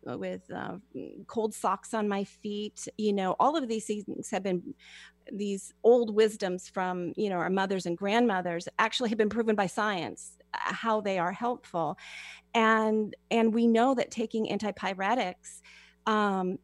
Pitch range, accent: 190-235 Hz, American